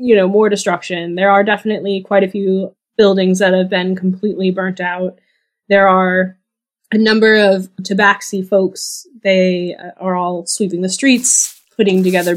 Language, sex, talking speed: English, female, 155 wpm